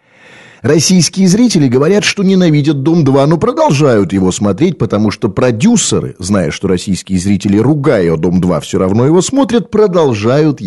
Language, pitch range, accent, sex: Russian, 110-175 Hz, native, male